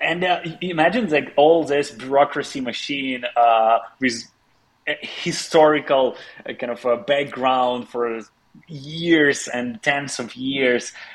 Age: 30-49